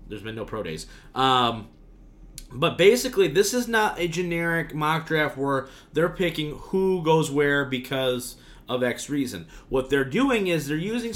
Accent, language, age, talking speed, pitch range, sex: American, English, 30-49, 165 wpm, 130-175 Hz, male